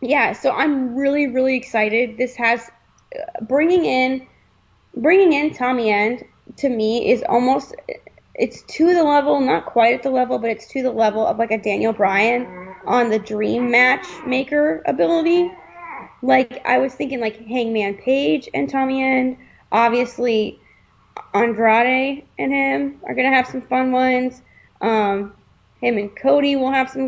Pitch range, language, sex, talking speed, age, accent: 215-265 Hz, English, female, 155 wpm, 10-29, American